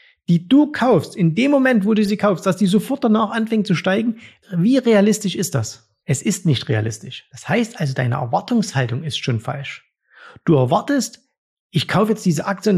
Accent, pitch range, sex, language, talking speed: German, 150-205 Hz, male, German, 190 wpm